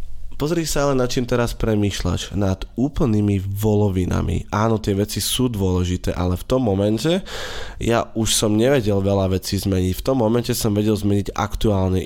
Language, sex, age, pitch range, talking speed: Slovak, male, 20-39, 100-115 Hz, 165 wpm